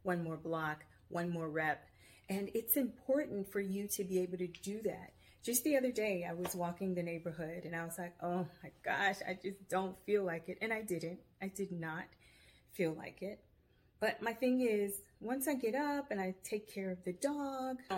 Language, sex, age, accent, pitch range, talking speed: English, female, 30-49, American, 170-215 Hz, 210 wpm